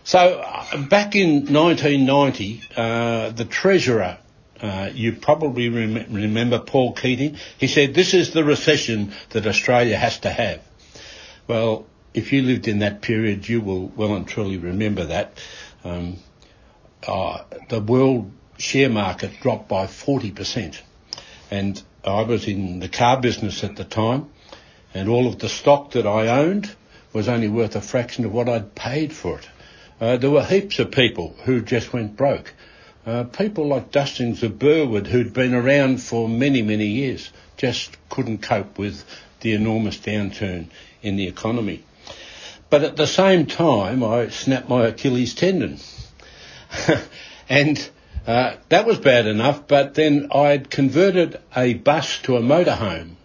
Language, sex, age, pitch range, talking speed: English, male, 60-79, 105-140 Hz, 150 wpm